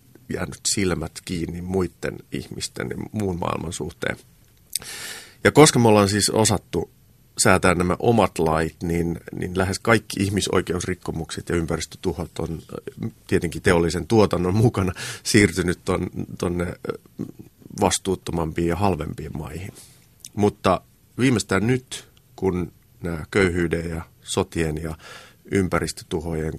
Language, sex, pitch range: Finnish, male, 85-105 Hz